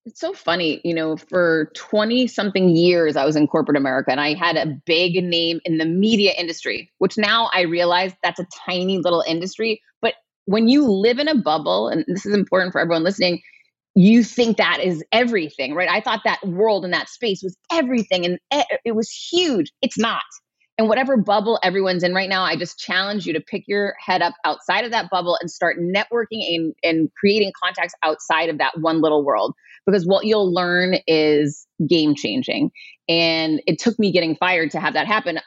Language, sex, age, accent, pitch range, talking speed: English, female, 30-49, American, 165-210 Hz, 200 wpm